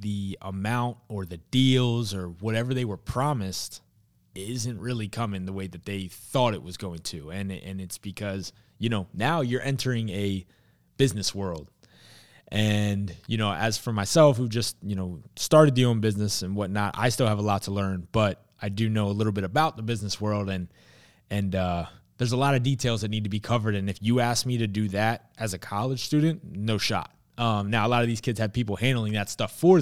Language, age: English, 20-39